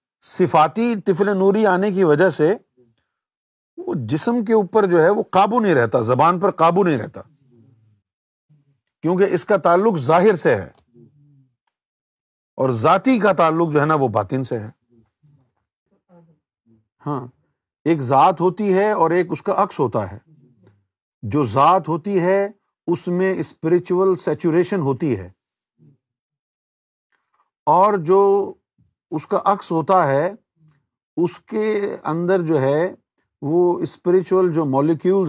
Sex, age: male, 50-69